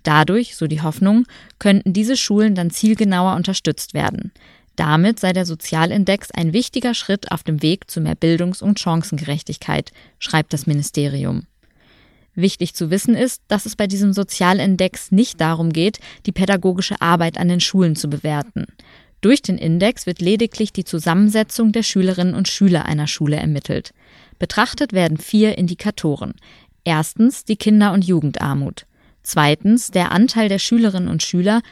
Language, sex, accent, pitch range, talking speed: German, female, German, 165-215 Hz, 150 wpm